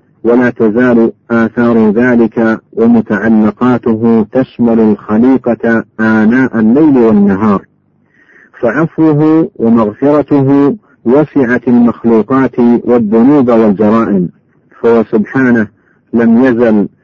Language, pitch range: Arabic, 110-125 Hz